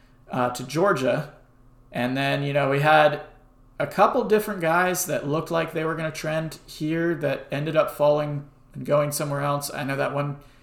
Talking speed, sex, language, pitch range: 190 wpm, male, English, 130-150 Hz